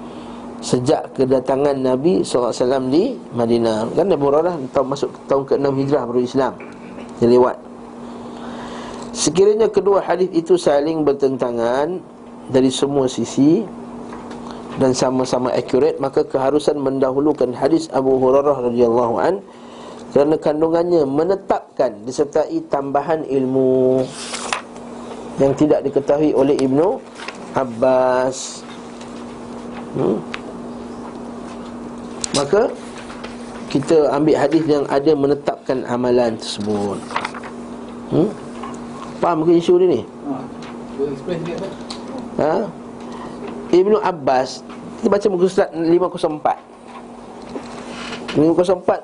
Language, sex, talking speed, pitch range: Malay, male, 90 wpm, 130-185 Hz